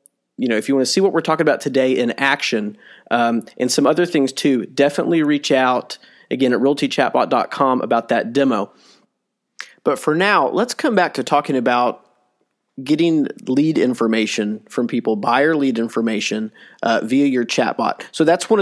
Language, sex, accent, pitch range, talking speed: English, male, American, 120-150 Hz, 170 wpm